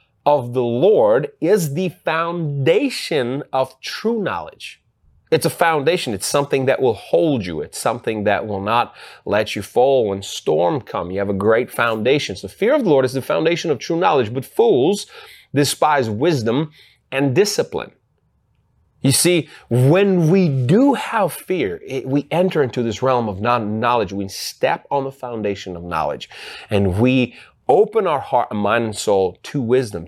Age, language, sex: 30-49, English, male